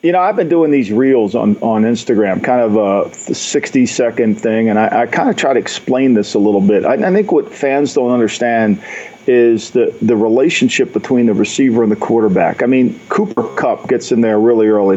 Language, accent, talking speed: English, American, 210 wpm